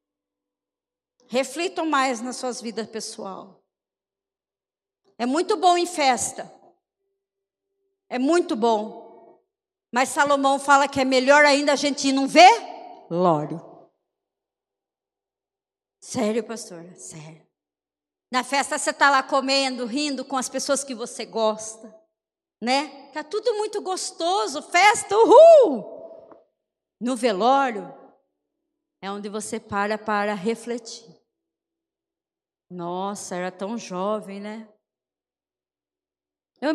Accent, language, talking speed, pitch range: Brazilian, Portuguese, 105 wpm, 220-325 Hz